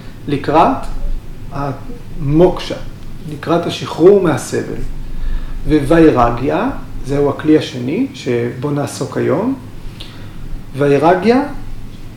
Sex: male